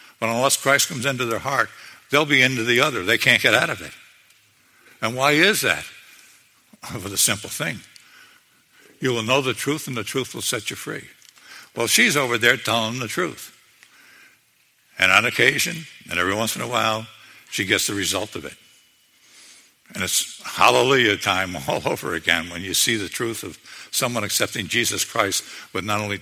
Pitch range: 90-115 Hz